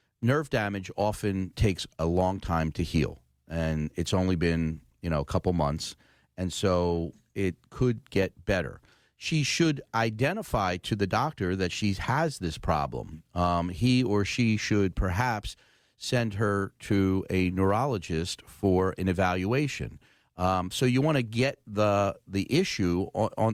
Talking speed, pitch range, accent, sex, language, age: 150 wpm, 90-110 Hz, American, male, English, 40-59